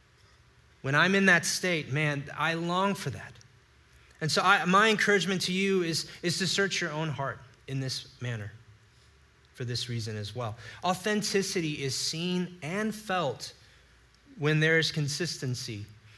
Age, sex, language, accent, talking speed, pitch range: 30-49, male, English, American, 150 wpm, 120-175 Hz